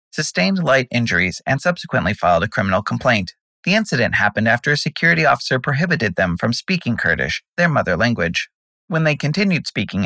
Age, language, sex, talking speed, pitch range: 30-49, English, male, 165 wpm, 115-155 Hz